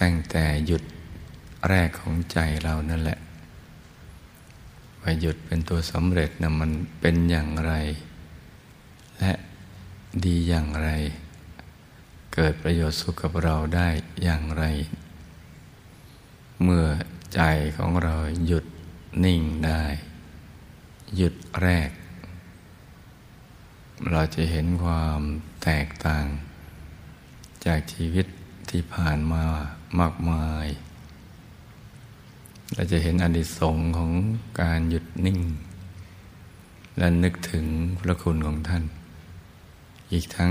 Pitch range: 80-90 Hz